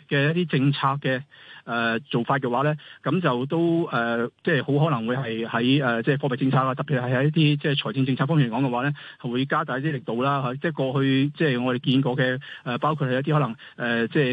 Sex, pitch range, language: male, 125-155 Hz, Chinese